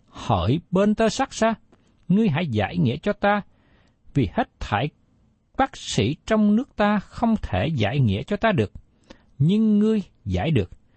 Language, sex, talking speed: Vietnamese, male, 165 wpm